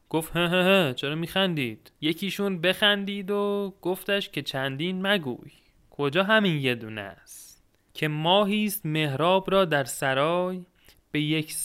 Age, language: 30-49, Persian